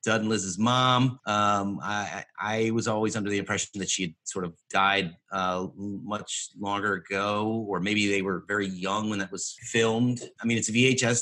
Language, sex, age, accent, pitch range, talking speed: English, male, 30-49, American, 95-110 Hz, 200 wpm